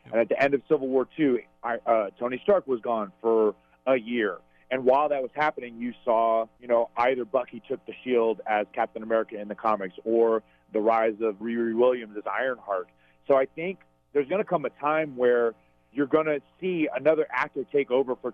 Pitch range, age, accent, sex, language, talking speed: 115-145 Hz, 40-59, American, male, English, 210 wpm